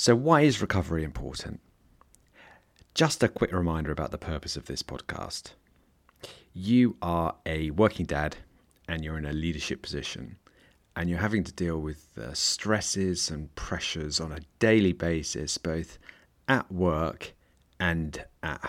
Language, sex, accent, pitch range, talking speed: English, male, British, 75-95 Hz, 140 wpm